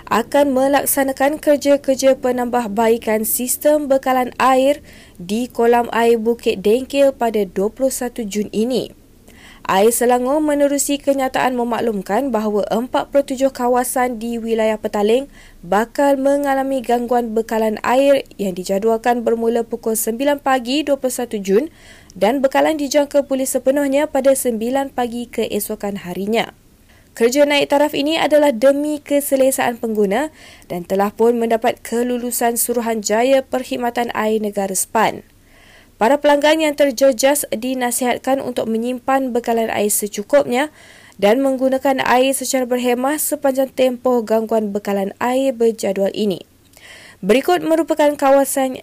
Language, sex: Malay, female